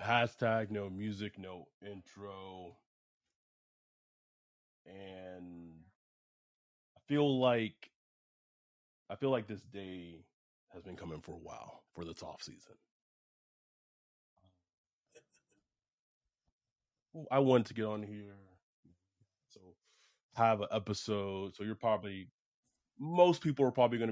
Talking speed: 105 wpm